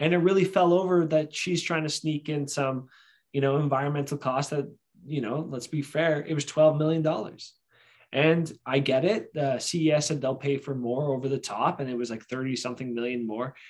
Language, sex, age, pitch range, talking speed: English, male, 20-39, 135-160 Hz, 215 wpm